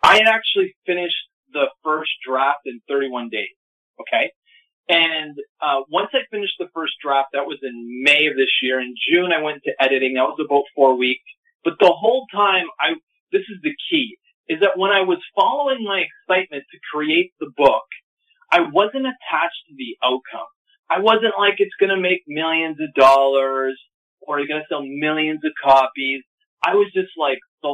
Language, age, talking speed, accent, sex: English, 30-49, 190 wpm, American, male